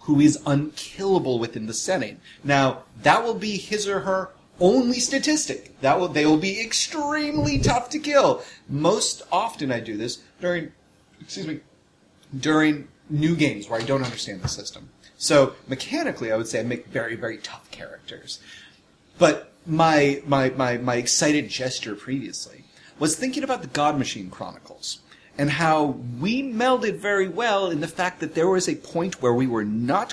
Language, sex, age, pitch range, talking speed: English, male, 30-49, 115-180 Hz, 170 wpm